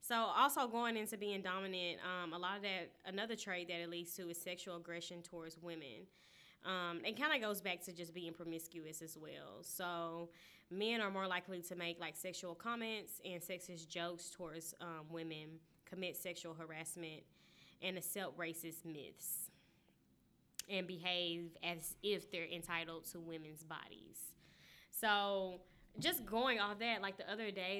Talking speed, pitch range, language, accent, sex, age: 160 wpm, 165-195 Hz, English, American, female, 10-29